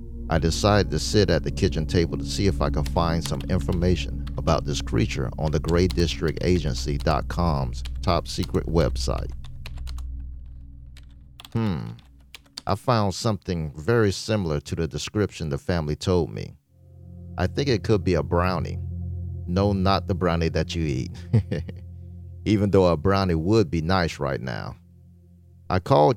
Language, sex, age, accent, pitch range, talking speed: English, male, 40-59, American, 70-95 Hz, 145 wpm